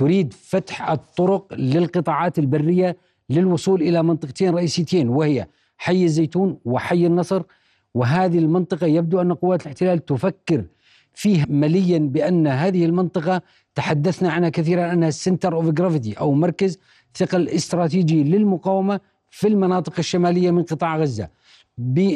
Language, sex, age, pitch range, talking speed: Arabic, male, 50-69, 155-185 Hz, 120 wpm